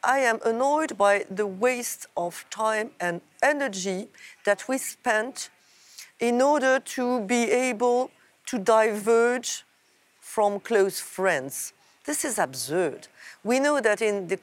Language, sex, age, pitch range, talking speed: Polish, female, 50-69, 190-250 Hz, 130 wpm